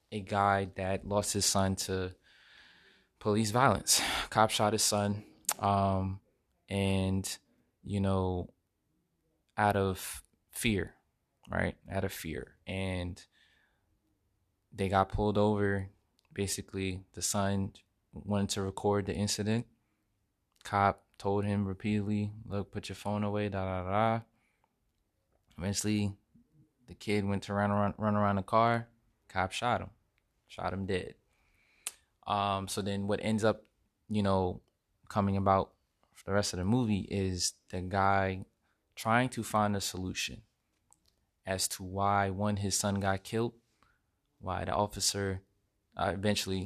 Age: 20-39